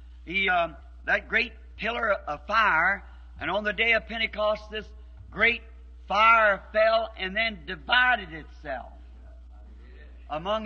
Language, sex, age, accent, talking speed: English, male, 60-79, American, 125 wpm